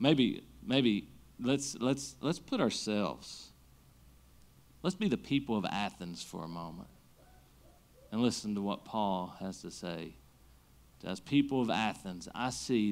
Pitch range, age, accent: 105-155 Hz, 40-59, American